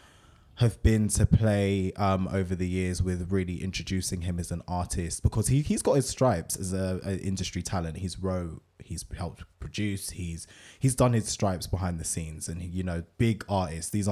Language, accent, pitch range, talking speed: English, British, 90-110 Hz, 190 wpm